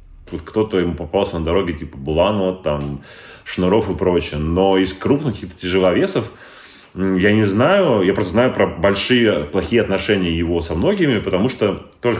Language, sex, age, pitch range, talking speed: Russian, male, 30-49, 90-130 Hz, 160 wpm